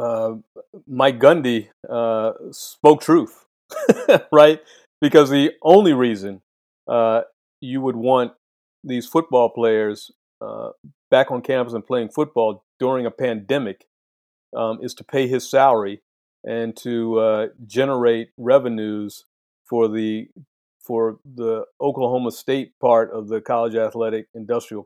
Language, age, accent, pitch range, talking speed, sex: English, 40-59, American, 110-130 Hz, 125 wpm, male